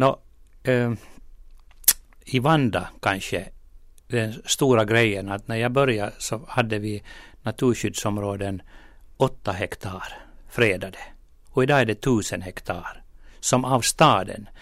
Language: Finnish